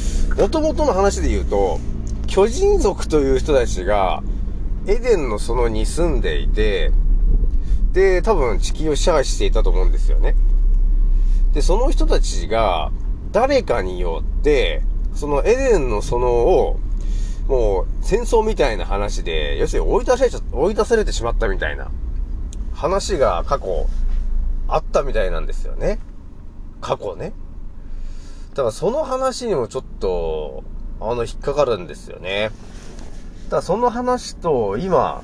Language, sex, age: Japanese, male, 30-49